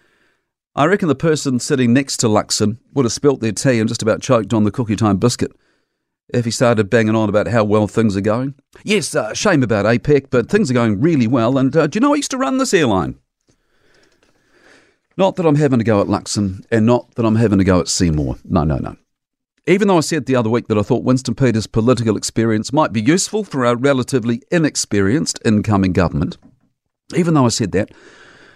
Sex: male